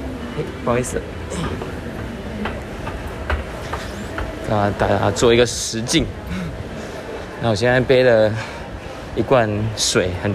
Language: Chinese